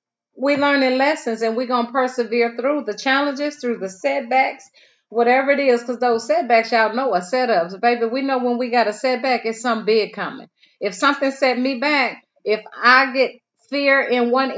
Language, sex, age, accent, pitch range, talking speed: English, female, 30-49, American, 215-260 Hz, 195 wpm